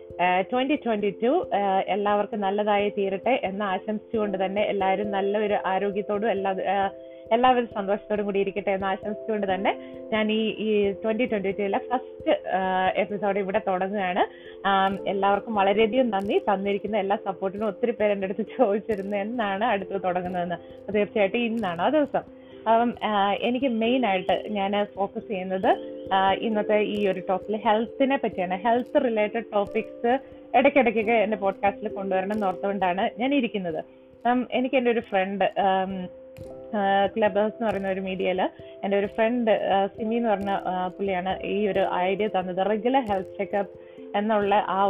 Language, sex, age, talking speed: Malayalam, female, 20-39, 130 wpm